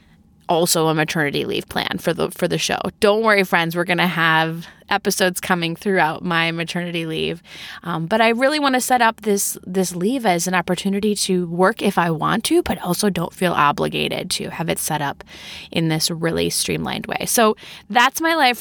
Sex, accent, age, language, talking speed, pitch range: female, American, 20-39, English, 200 wpm, 165-225 Hz